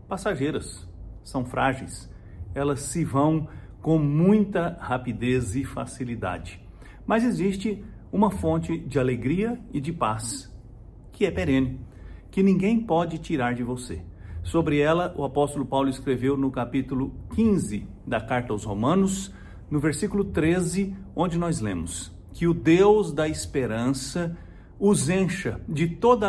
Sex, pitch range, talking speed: male, 110-170 Hz, 130 wpm